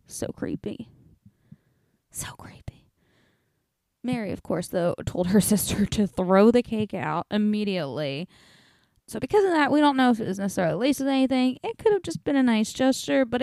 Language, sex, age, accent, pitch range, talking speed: English, female, 20-39, American, 190-260 Hz, 180 wpm